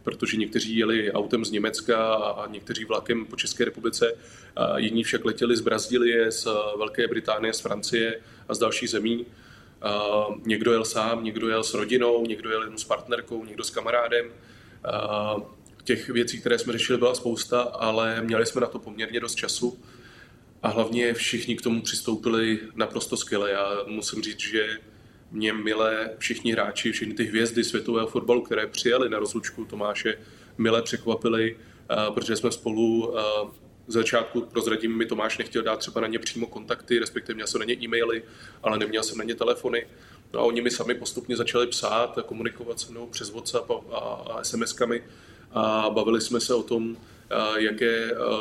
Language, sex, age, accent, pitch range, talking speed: Czech, male, 20-39, native, 110-120 Hz, 165 wpm